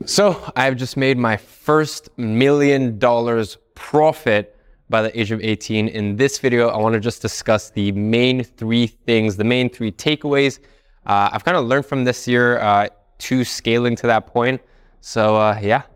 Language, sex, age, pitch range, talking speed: English, male, 20-39, 100-125 Hz, 175 wpm